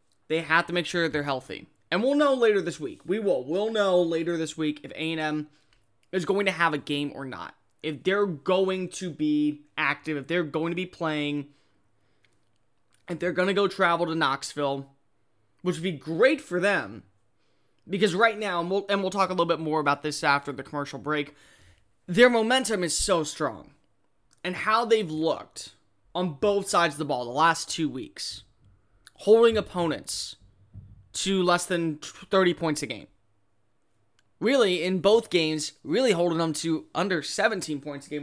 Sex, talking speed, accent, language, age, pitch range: male, 180 wpm, American, English, 20-39, 130-190 Hz